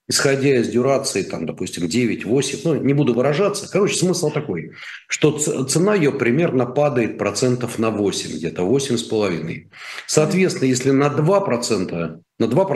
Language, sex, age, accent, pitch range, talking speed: Russian, male, 40-59, native, 110-145 Hz, 130 wpm